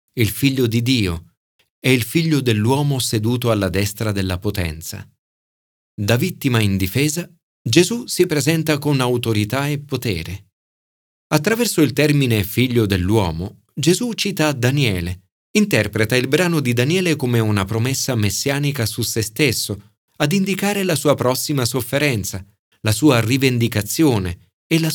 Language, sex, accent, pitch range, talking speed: Italian, male, native, 100-140 Hz, 130 wpm